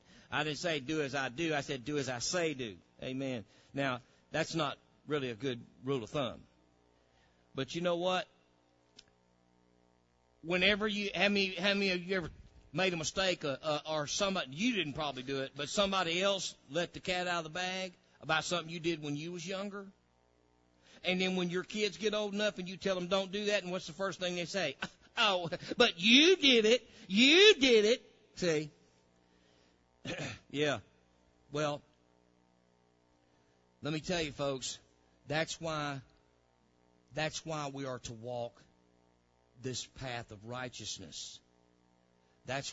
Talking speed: 160 wpm